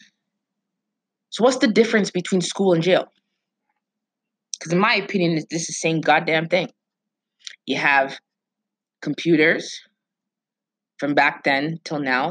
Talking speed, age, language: 125 wpm, 20-39, English